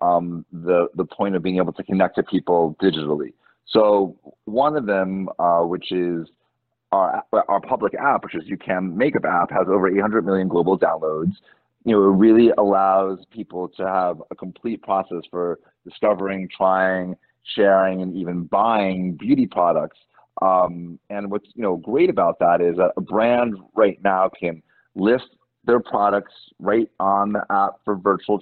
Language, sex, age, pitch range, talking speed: English, male, 30-49, 90-105 Hz, 170 wpm